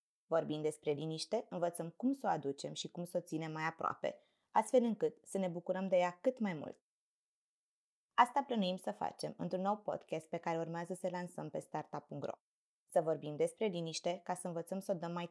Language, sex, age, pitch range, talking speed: Romanian, female, 20-39, 160-190 Hz, 195 wpm